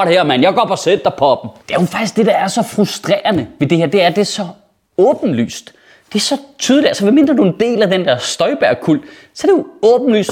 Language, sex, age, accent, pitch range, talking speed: Danish, male, 30-49, native, 185-300 Hz, 250 wpm